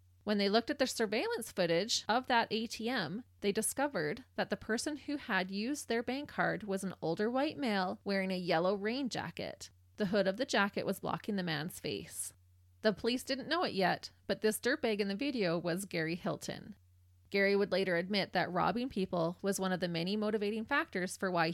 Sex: female